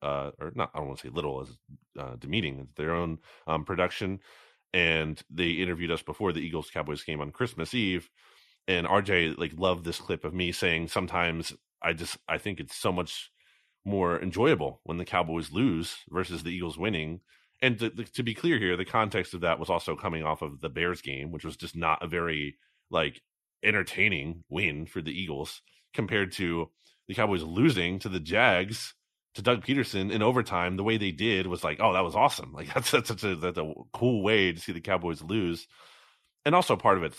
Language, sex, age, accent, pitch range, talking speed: English, male, 30-49, American, 80-105 Hz, 205 wpm